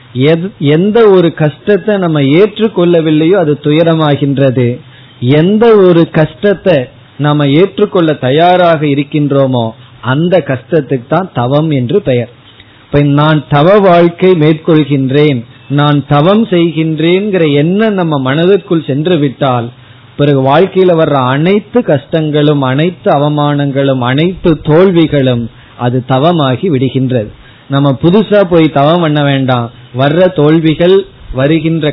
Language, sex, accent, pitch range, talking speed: Tamil, male, native, 130-170 Hz, 85 wpm